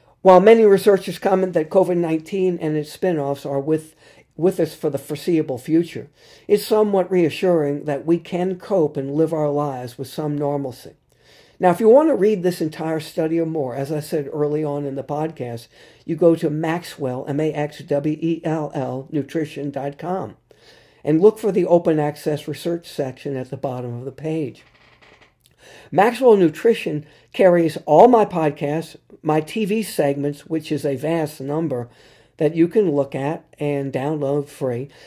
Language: English